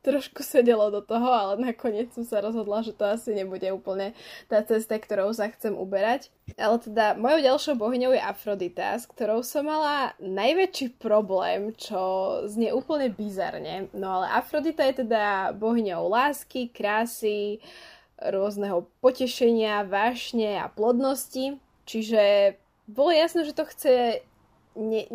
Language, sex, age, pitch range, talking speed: Slovak, female, 20-39, 210-270 Hz, 135 wpm